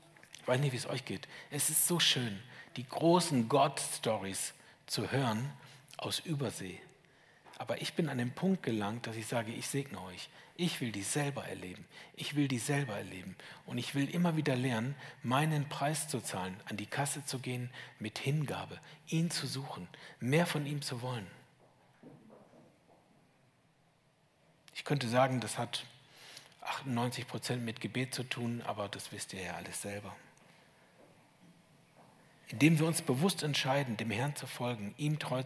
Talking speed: 160 wpm